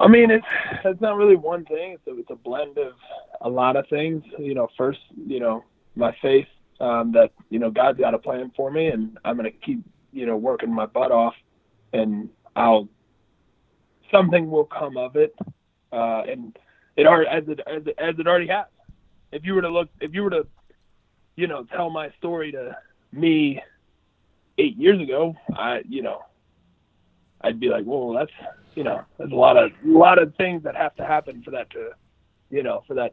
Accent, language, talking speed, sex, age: American, English, 195 wpm, male, 30-49